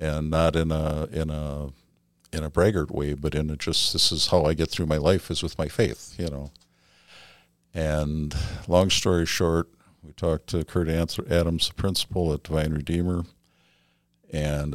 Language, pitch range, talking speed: English, 80-90 Hz, 175 wpm